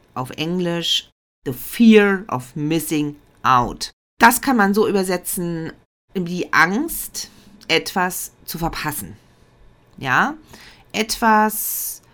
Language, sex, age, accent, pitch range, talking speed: German, female, 40-59, German, 165-215 Hz, 95 wpm